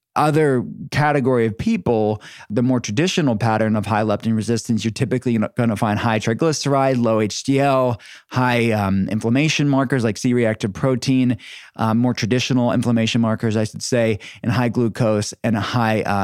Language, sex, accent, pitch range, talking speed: English, male, American, 110-135 Hz, 155 wpm